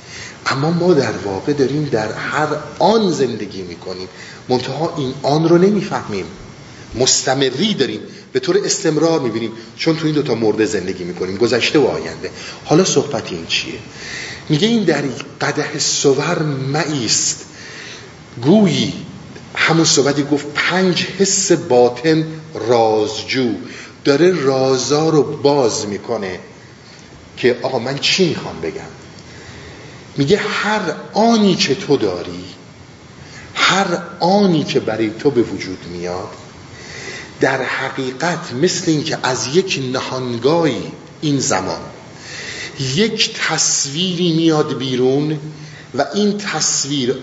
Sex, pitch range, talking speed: male, 130-175 Hz, 115 wpm